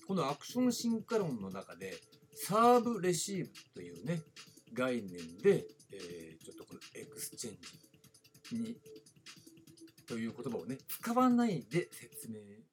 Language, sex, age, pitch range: Japanese, male, 60-79, 125-205 Hz